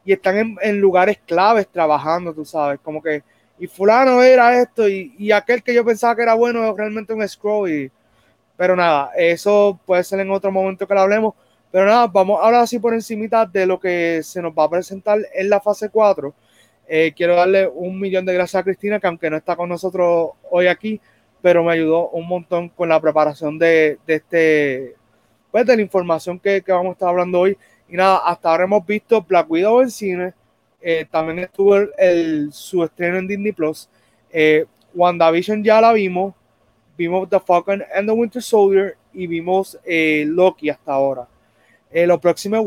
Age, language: 30-49, Spanish